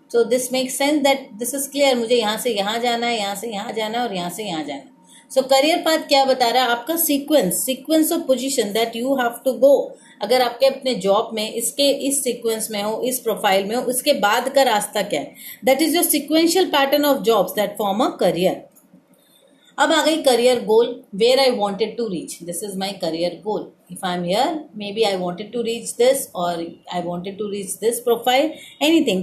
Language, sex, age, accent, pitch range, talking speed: English, female, 30-49, Indian, 220-280 Hz, 170 wpm